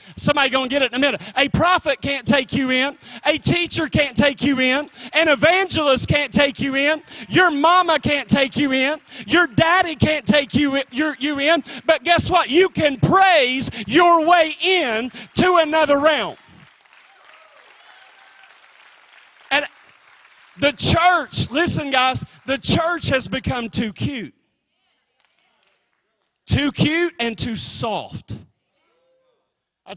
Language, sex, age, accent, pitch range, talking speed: English, male, 40-59, American, 220-300 Hz, 130 wpm